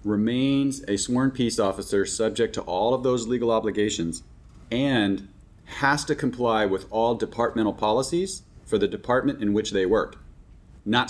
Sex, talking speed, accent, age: male, 150 wpm, American, 30-49